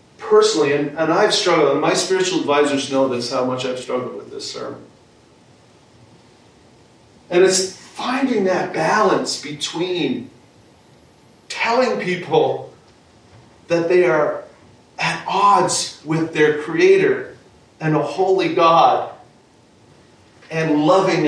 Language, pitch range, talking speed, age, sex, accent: English, 155-230 Hz, 115 wpm, 40-59, male, American